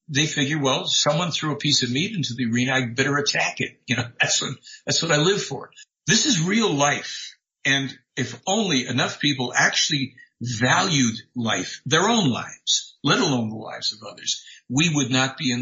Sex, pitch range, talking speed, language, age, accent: male, 125-165 Hz, 195 wpm, English, 60-79, American